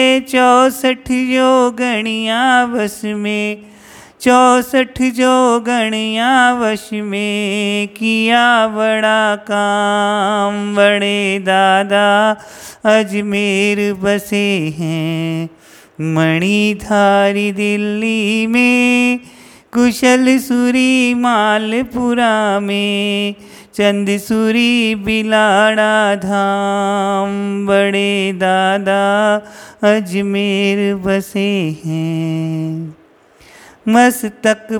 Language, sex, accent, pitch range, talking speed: Hindi, male, native, 200-240 Hz, 55 wpm